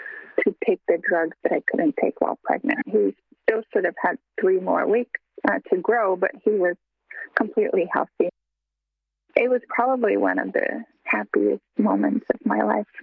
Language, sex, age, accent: English, female, 30-49, American